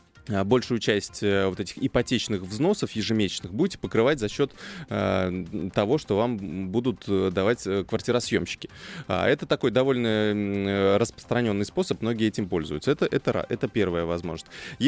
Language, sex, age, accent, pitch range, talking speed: Russian, male, 20-39, native, 95-120 Hz, 120 wpm